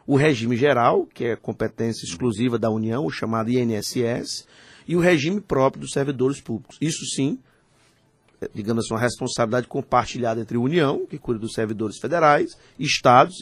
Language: Portuguese